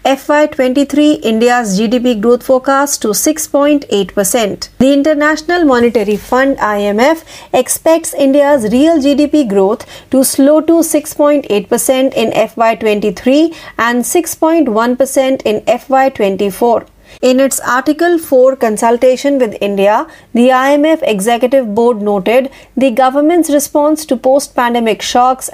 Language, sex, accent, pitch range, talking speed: Marathi, female, native, 230-295 Hz, 110 wpm